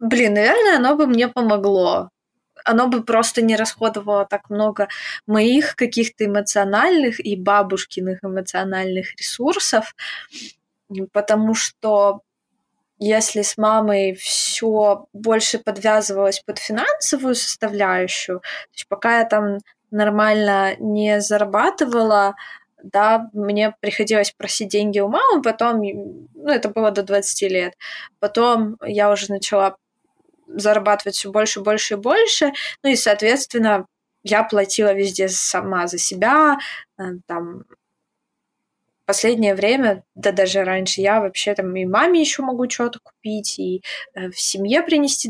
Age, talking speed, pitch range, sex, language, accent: 20-39, 125 wpm, 200-230 Hz, female, Ukrainian, native